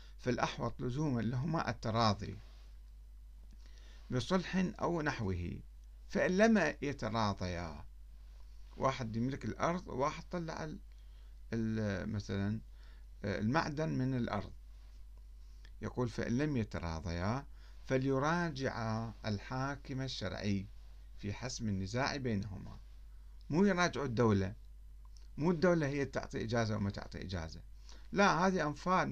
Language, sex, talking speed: Arabic, male, 90 wpm